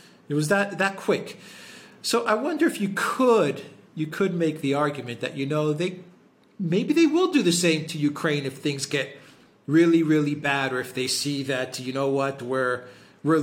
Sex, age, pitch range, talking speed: male, 40-59, 135-210 Hz, 195 wpm